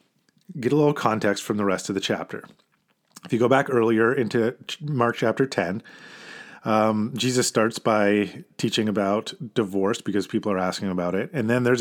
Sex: male